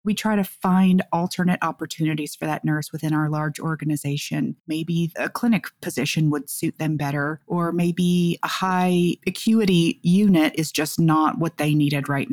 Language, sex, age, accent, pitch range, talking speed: English, female, 30-49, American, 155-190 Hz, 165 wpm